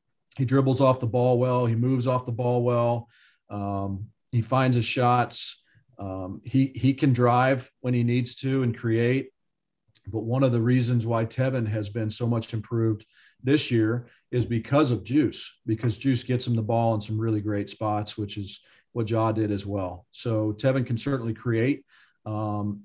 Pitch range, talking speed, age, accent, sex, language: 110-125 Hz, 185 wpm, 40-59, American, male, English